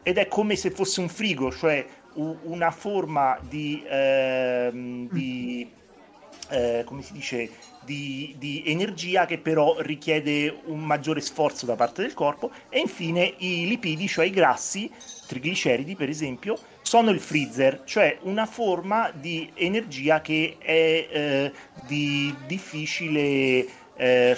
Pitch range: 130-185 Hz